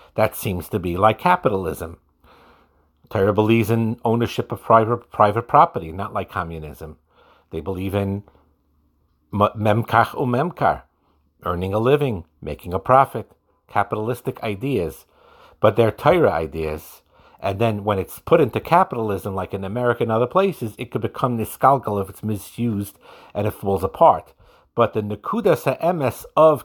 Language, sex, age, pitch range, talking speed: English, male, 50-69, 95-120 Hz, 145 wpm